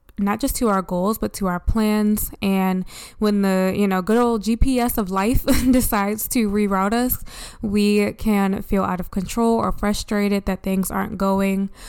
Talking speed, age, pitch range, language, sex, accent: 175 wpm, 20-39, 190-215 Hz, English, female, American